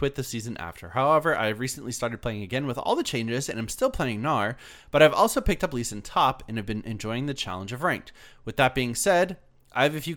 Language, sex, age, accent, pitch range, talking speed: English, male, 20-39, American, 110-145 Hz, 260 wpm